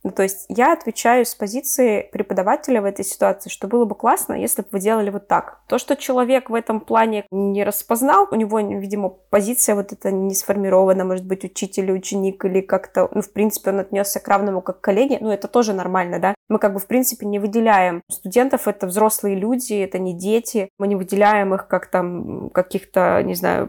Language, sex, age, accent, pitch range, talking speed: Russian, female, 20-39, native, 190-225 Hz, 205 wpm